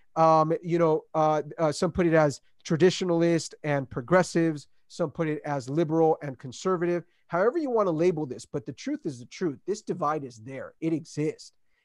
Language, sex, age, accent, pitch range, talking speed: English, male, 30-49, American, 145-175 Hz, 185 wpm